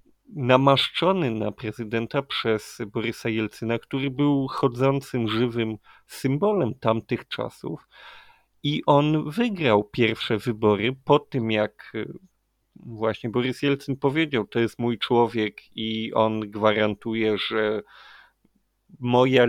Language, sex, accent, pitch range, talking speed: Polish, male, native, 115-145 Hz, 105 wpm